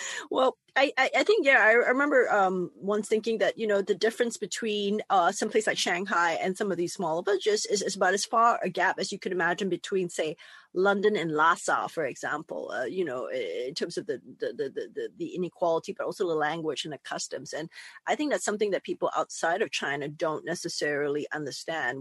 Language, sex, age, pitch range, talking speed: English, female, 40-59, 180-295 Hz, 205 wpm